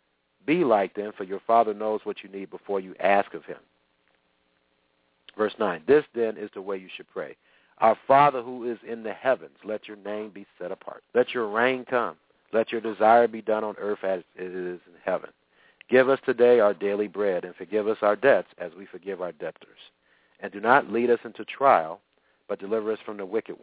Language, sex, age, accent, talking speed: English, male, 50-69, American, 210 wpm